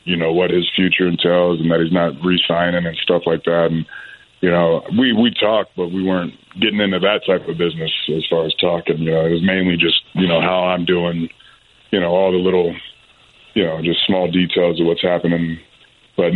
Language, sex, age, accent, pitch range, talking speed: English, male, 20-39, American, 85-95 Hz, 215 wpm